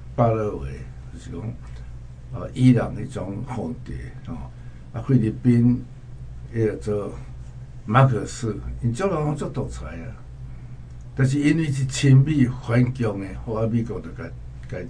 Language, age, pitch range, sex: Chinese, 60-79, 105-125 Hz, male